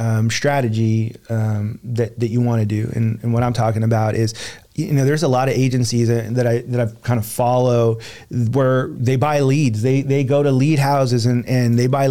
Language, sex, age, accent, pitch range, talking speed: English, male, 30-49, American, 120-135 Hz, 225 wpm